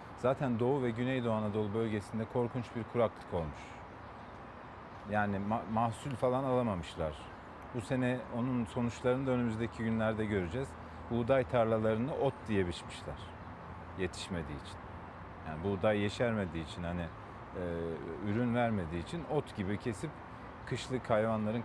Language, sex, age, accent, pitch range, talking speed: Turkish, male, 40-59, native, 95-125 Hz, 120 wpm